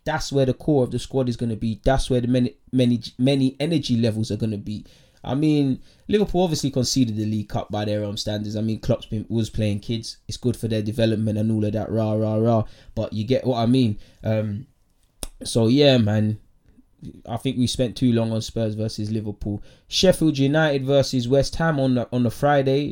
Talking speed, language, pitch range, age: 220 wpm, English, 110-130 Hz, 20-39